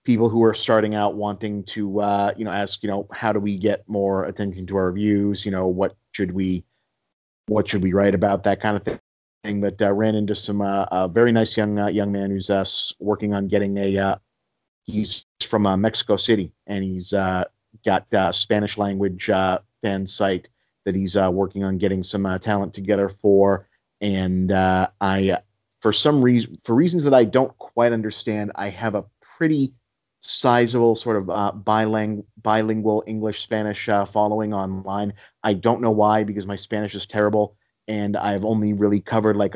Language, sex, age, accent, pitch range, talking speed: English, male, 40-59, American, 100-110 Hz, 190 wpm